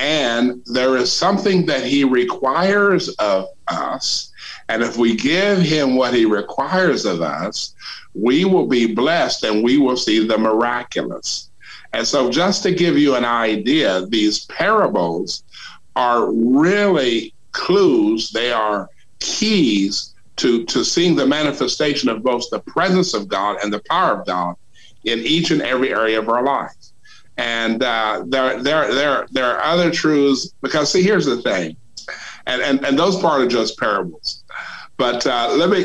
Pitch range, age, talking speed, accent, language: 115-185 Hz, 50-69, 160 wpm, American, English